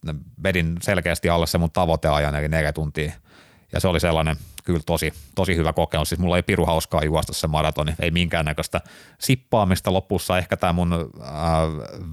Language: Finnish